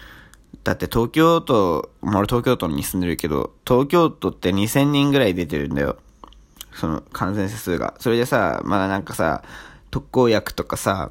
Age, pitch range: 20-39, 90-140 Hz